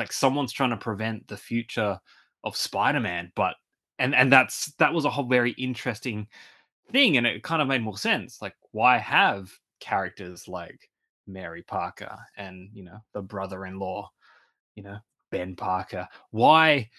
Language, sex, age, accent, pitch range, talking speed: English, male, 20-39, Australian, 100-130 Hz, 155 wpm